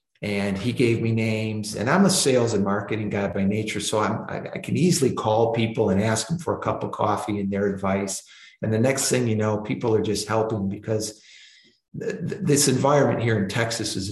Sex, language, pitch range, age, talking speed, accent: male, English, 105-120 Hz, 50-69, 220 wpm, American